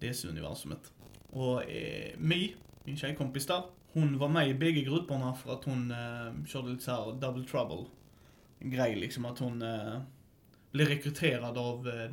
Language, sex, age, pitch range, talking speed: Swedish, male, 30-49, 125-155 Hz, 150 wpm